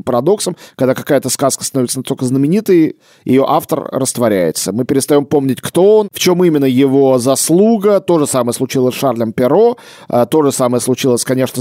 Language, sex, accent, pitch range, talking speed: Russian, male, native, 120-160 Hz, 165 wpm